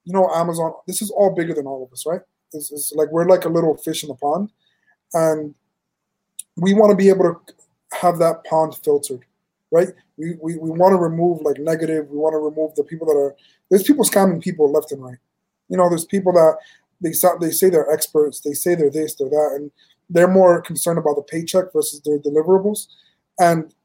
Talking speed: 215 wpm